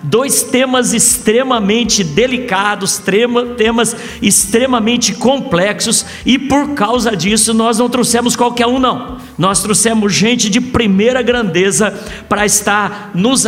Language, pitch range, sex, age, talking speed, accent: Portuguese, 200-230 Hz, male, 50-69, 115 wpm, Brazilian